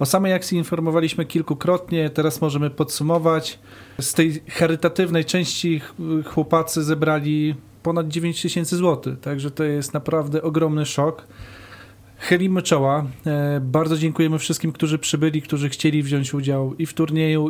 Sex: male